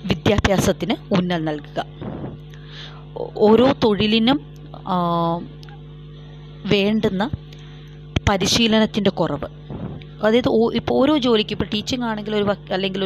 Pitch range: 150-215 Hz